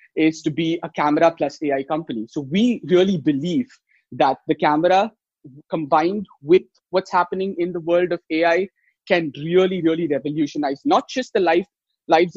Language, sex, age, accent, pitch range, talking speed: English, male, 30-49, Indian, 150-185 Hz, 160 wpm